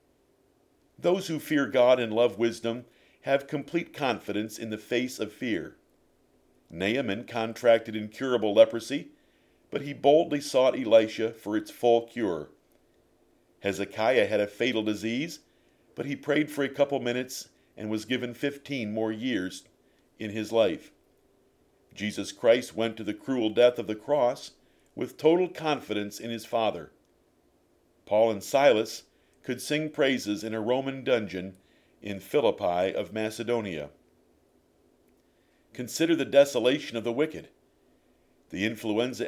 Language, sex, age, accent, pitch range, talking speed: English, male, 50-69, American, 110-140 Hz, 135 wpm